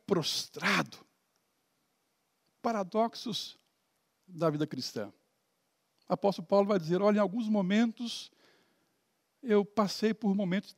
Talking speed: 100 wpm